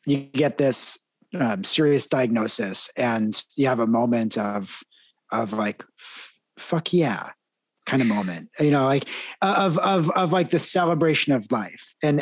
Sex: male